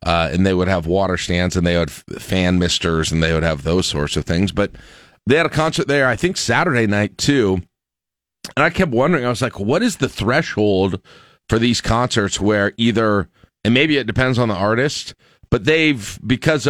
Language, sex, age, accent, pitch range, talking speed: English, male, 40-59, American, 85-120 Hz, 205 wpm